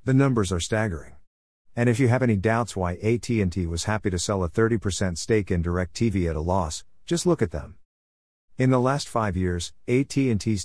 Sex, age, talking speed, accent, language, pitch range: male, 50-69, 190 wpm, American, English, 90-115 Hz